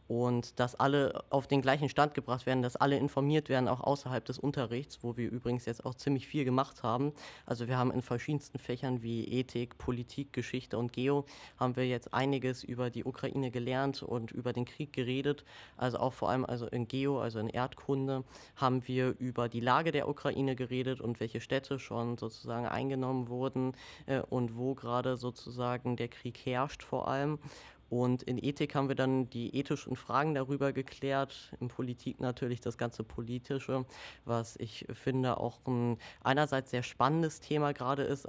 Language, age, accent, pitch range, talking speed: German, 20-39, German, 120-135 Hz, 175 wpm